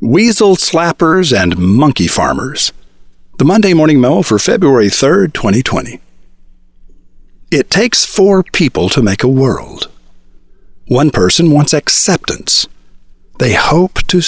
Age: 50-69